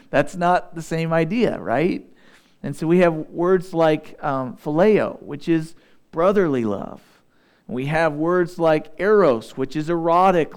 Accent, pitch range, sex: American, 160-200 Hz, male